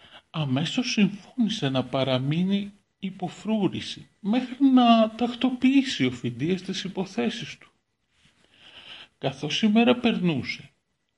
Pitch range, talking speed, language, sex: 130-210 Hz, 95 wpm, Greek, male